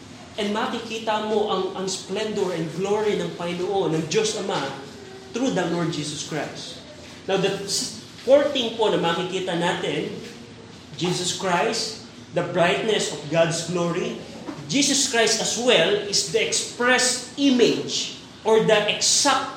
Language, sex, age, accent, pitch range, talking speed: Filipino, male, 20-39, native, 175-220 Hz, 130 wpm